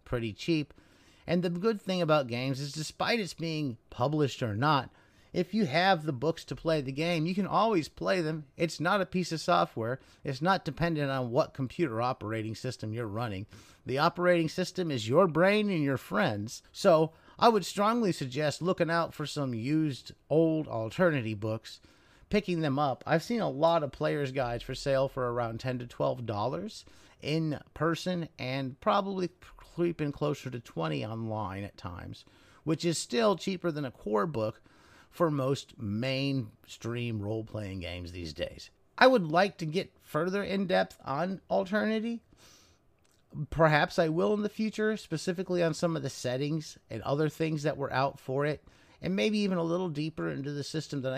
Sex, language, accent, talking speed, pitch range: male, English, American, 175 wpm, 125-175 Hz